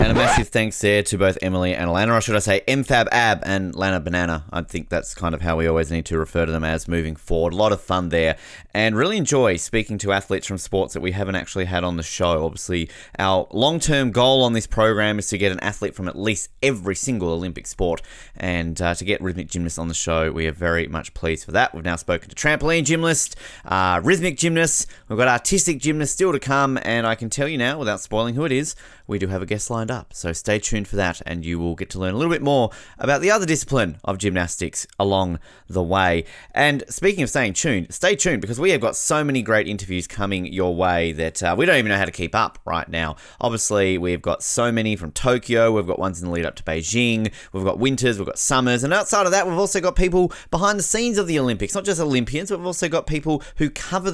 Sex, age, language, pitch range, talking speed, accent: male, 20-39, English, 90-130 Hz, 250 wpm, Australian